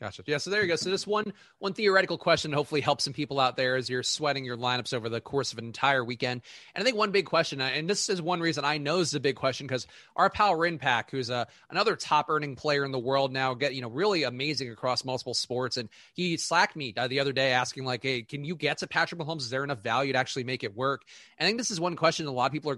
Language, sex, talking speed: English, male, 280 wpm